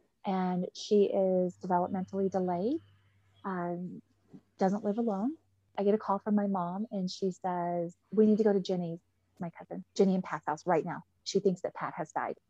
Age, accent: 30-49, American